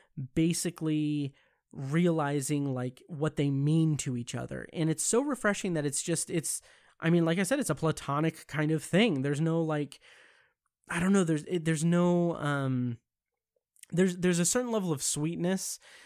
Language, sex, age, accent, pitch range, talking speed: English, male, 20-39, American, 140-165 Hz, 170 wpm